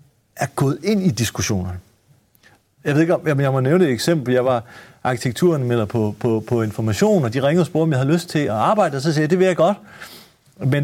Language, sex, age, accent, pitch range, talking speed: Danish, male, 40-59, native, 125-170 Hz, 240 wpm